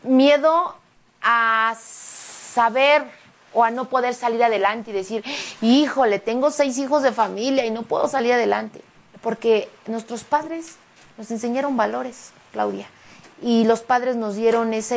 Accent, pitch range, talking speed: Mexican, 200-245 Hz, 140 wpm